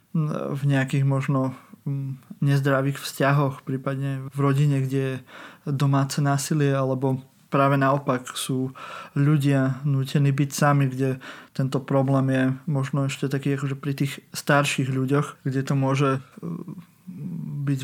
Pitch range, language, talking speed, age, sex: 135-145 Hz, Slovak, 120 wpm, 20-39, male